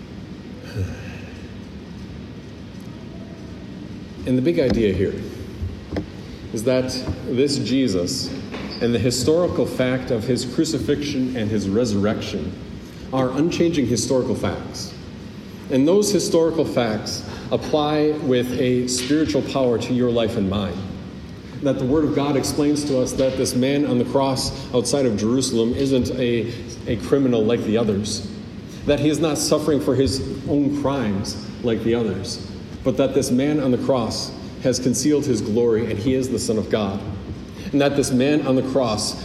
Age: 40-59